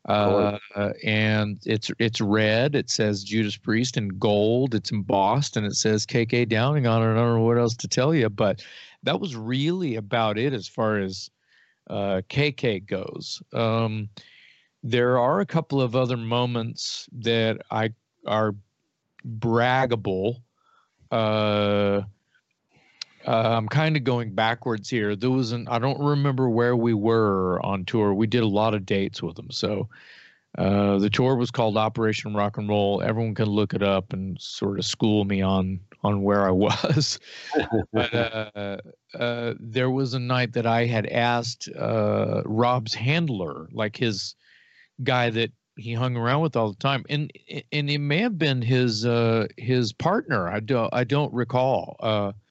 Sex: male